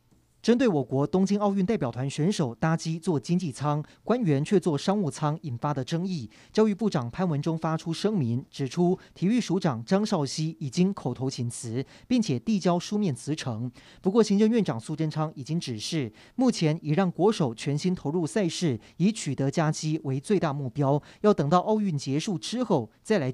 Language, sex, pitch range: Chinese, male, 140-190 Hz